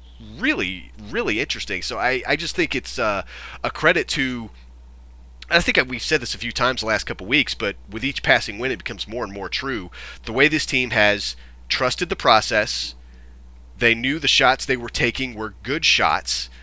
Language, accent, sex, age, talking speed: English, American, male, 30-49, 195 wpm